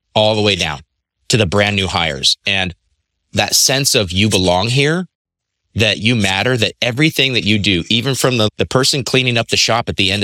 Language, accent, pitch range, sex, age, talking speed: English, American, 90-115 Hz, male, 30-49, 210 wpm